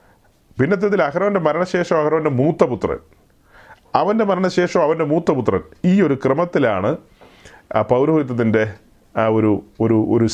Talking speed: 140 wpm